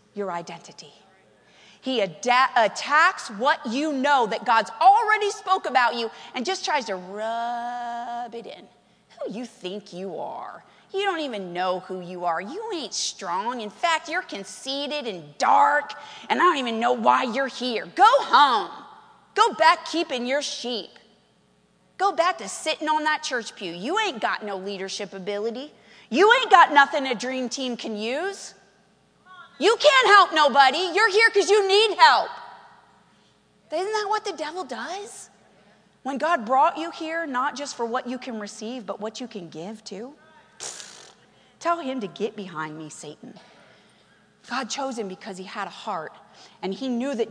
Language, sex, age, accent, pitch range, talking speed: English, female, 30-49, American, 210-320 Hz, 165 wpm